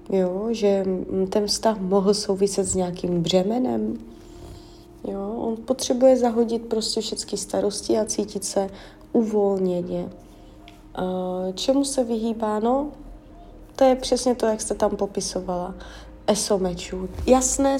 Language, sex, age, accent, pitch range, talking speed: Czech, female, 30-49, native, 185-230 Hz, 120 wpm